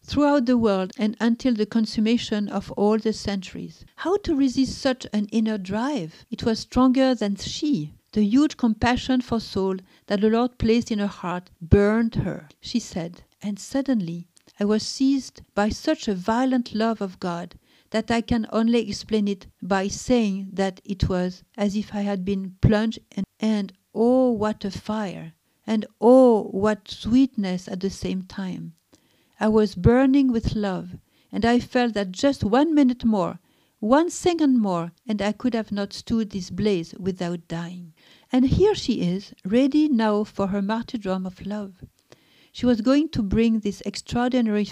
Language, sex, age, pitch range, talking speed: English, female, 50-69, 195-235 Hz, 170 wpm